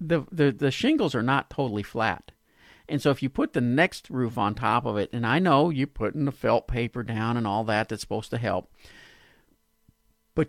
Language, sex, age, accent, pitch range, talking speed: English, male, 50-69, American, 110-145 Hz, 210 wpm